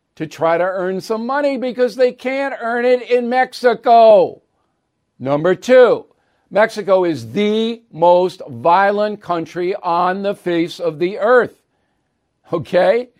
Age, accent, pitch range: 50-69, American, 180-245 Hz